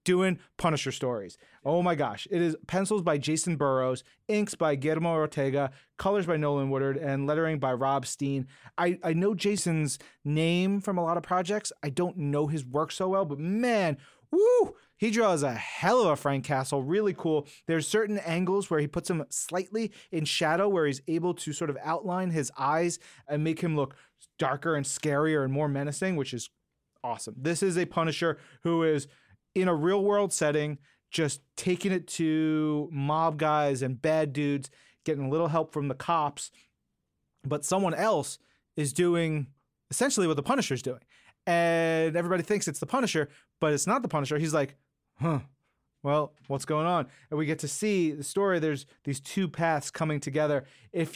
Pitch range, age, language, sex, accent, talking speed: 145-180 Hz, 30-49, English, male, American, 185 wpm